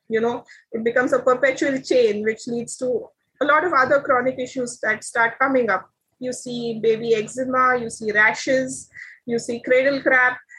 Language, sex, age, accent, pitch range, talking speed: English, female, 20-39, Indian, 240-285 Hz, 175 wpm